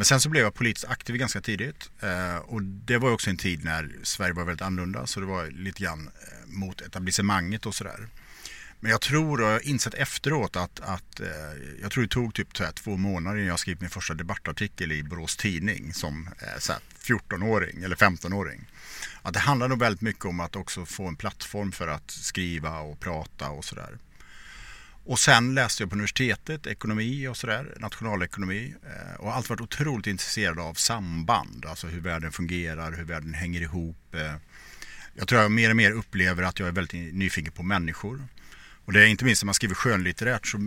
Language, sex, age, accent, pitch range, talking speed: English, male, 50-69, Norwegian, 90-115 Hz, 190 wpm